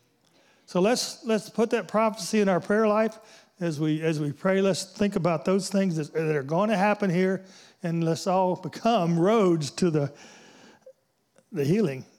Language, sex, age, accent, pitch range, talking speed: English, male, 40-59, American, 165-220 Hz, 170 wpm